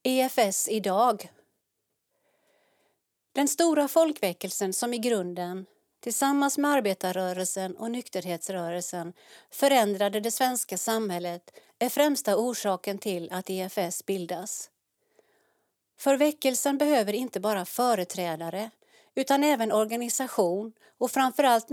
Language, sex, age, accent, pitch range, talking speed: Swedish, female, 40-59, native, 185-255 Hz, 95 wpm